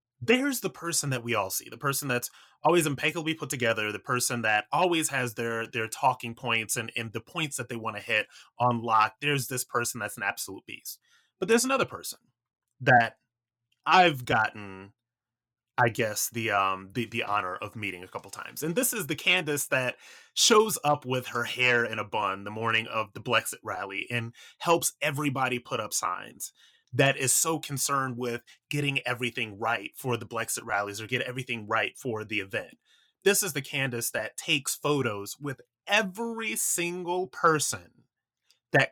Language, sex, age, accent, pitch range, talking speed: English, male, 30-49, American, 115-145 Hz, 180 wpm